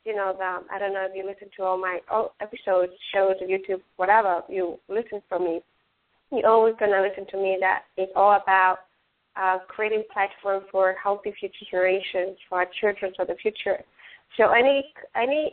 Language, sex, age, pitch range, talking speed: English, female, 30-49, 185-210 Hz, 180 wpm